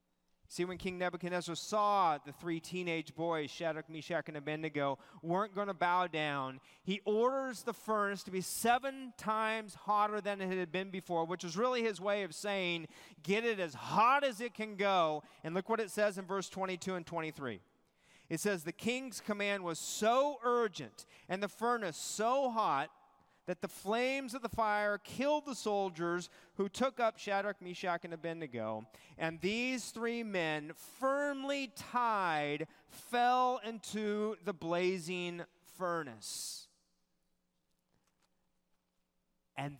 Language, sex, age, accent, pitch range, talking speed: English, male, 30-49, American, 155-210 Hz, 150 wpm